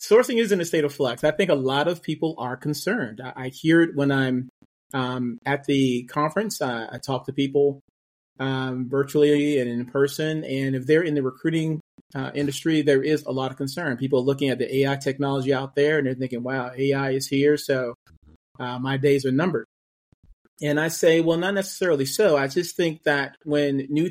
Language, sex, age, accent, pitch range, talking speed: English, male, 40-59, American, 130-150 Hz, 205 wpm